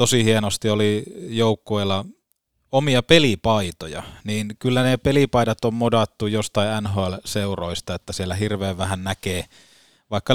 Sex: male